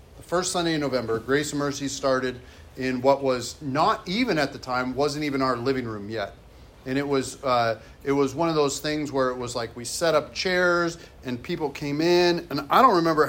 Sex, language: male, English